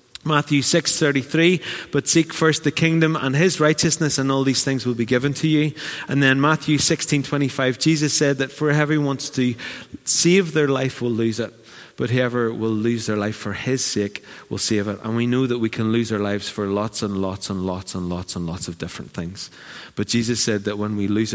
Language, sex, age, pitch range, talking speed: English, male, 30-49, 105-140 Hz, 215 wpm